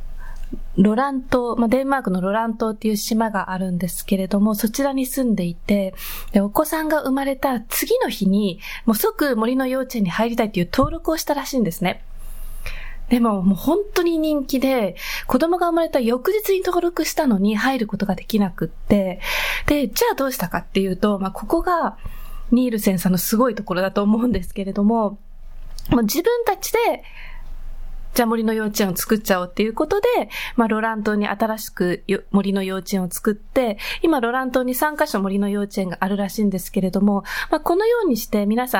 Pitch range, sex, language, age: 200-280 Hz, female, Japanese, 20-39